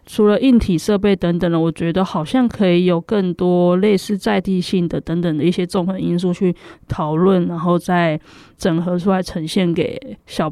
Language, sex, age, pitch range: Chinese, female, 20-39, 170-200 Hz